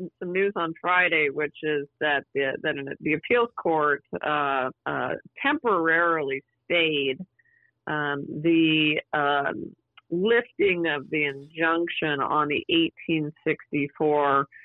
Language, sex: English, female